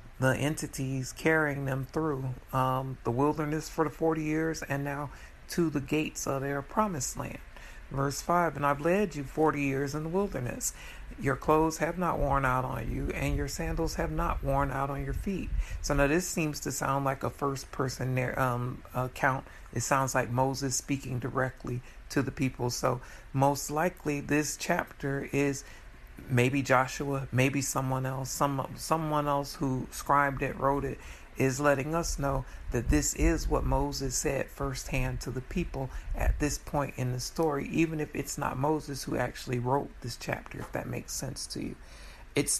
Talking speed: 180 wpm